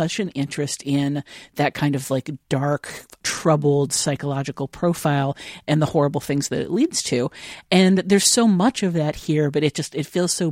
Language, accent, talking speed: English, American, 190 wpm